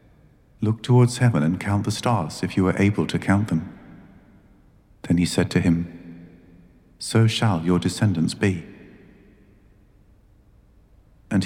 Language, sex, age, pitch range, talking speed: English, male, 50-69, 90-105 Hz, 130 wpm